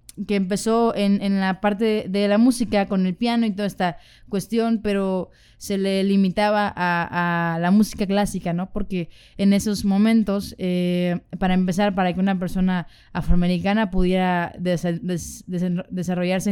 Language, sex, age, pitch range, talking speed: Spanish, female, 20-39, 175-200 Hz, 145 wpm